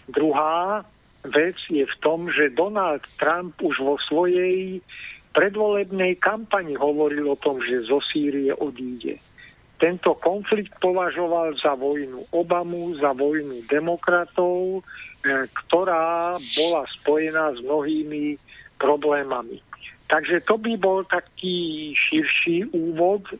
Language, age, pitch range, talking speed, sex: Slovak, 50-69, 150-185 Hz, 110 wpm, male